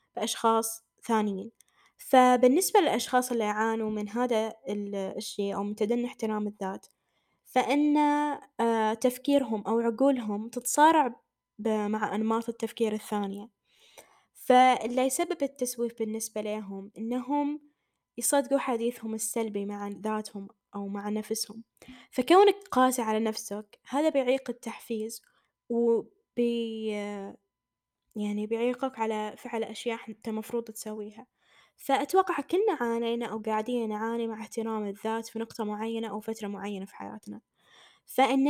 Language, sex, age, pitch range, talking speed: Arabic, female, 10-29, 215-255 Hz, 110 wpm